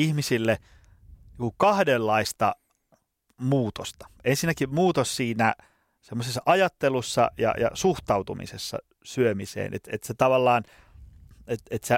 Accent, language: native, Finnish